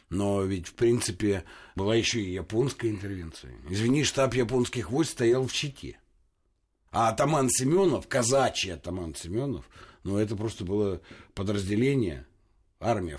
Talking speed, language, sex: 125 wpm, Russian, male